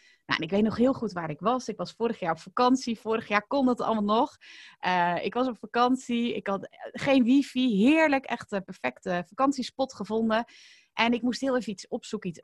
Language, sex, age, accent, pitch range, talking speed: Dutch, female, 30-49, Dutch, 180-245 Hz, 215 wpm